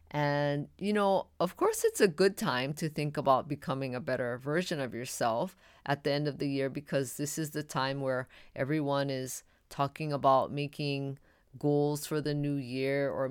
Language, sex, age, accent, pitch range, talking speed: English, female, 20-39, American, 135-170 Hz, 185 wpm